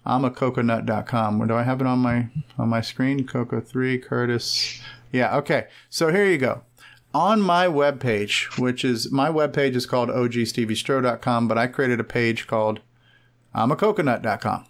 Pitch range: 120-140 Hz